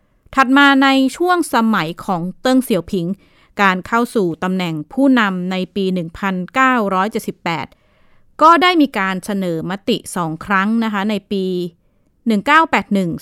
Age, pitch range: 20-39, 180-235 Hz